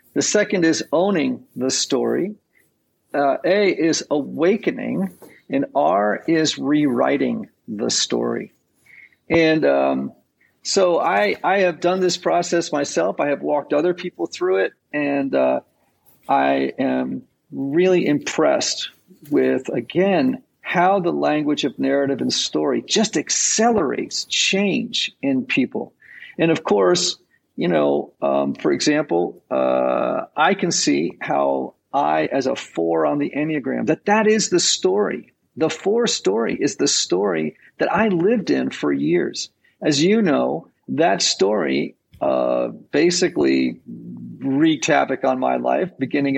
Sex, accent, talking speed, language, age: male, American, 135 wpm, English, 50-69